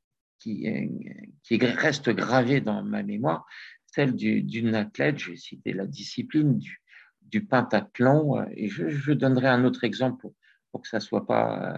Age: 60-79